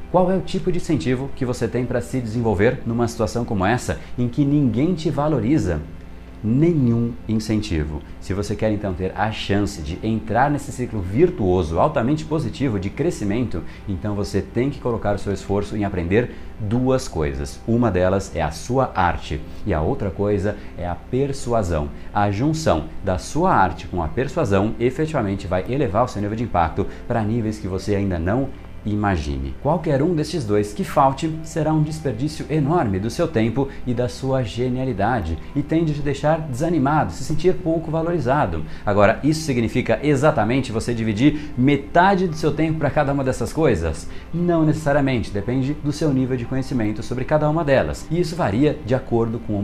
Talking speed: 180 wpm